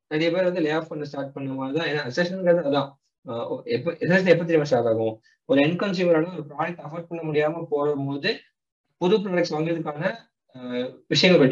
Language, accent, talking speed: Tamil, native, 145 wpm